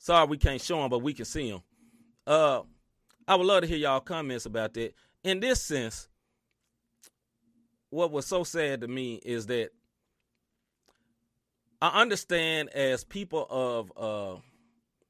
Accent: American